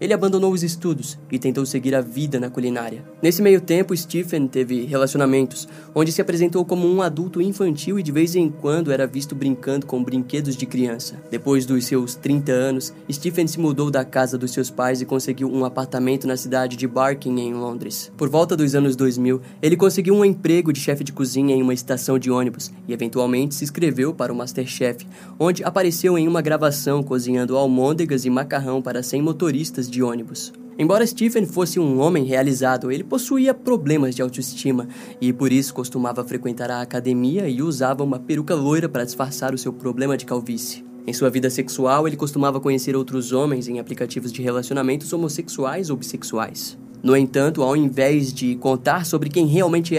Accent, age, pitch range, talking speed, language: Brazilian, 20-39, 130-160 Hz, 185 wpm, Portuguese